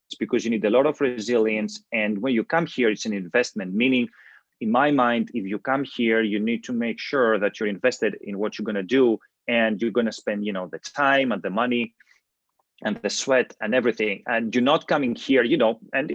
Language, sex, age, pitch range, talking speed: English, male, 30-49, 115-135 Hz, 225 wpm